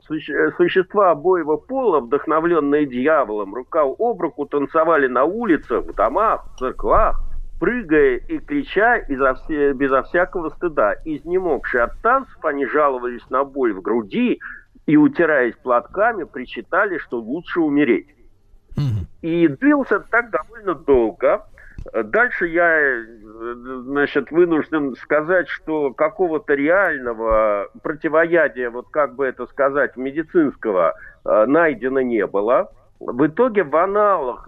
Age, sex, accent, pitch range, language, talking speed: 50-69, male, native, 130-215 Hz, Russian, 110 wpm